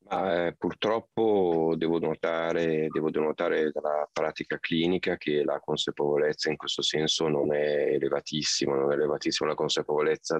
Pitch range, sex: 75-95 Hz, male